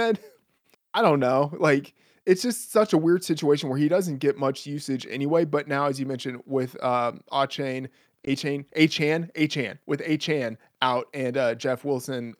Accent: American